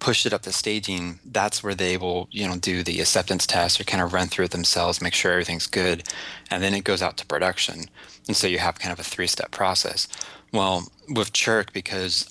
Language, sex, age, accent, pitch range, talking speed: English, male, 20-39, American, 90-100 Hz, 225 wpm